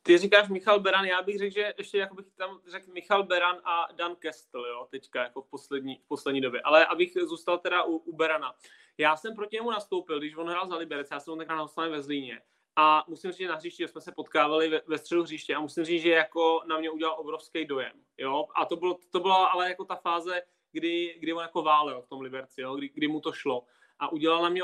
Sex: male